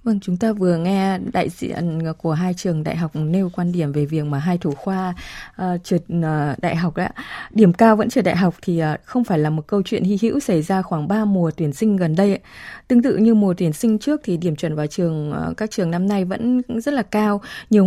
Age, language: 20-39, Vietnamese